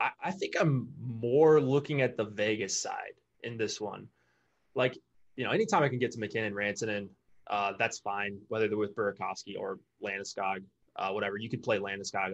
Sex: male